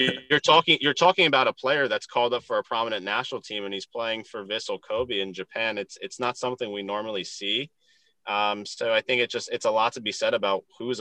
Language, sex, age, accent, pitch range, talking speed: English, male, 20-39, American, 95-125 Hz, 240 wpm